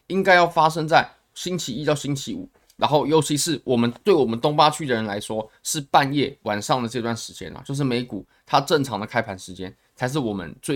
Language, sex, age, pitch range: Chinese, male, 20-39, 115-170 Hz